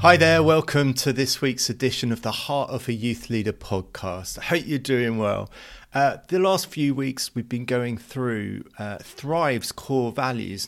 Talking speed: 185 wpm